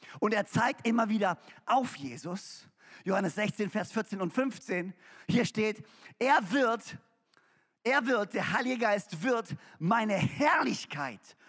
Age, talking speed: 40-59, 130 wpm